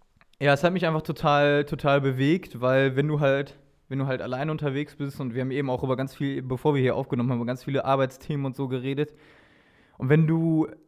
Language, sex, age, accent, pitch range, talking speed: German, male, 20-39, German, 125-150 Hz, 225 wpm